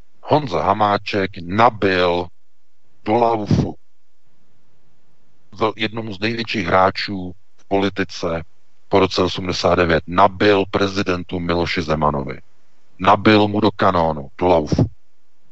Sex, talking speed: male, 90 wpm